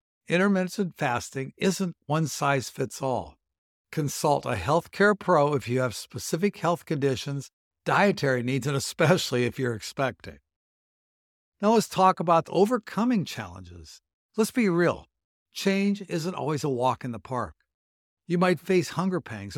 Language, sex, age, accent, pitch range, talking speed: English, male, 60-79, American, 125-185 Hz, 130 wpm